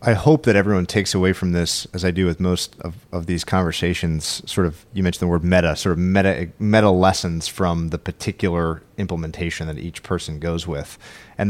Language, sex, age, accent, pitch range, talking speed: English, male, 30-49, American, 90-110 Hz, 205 wpm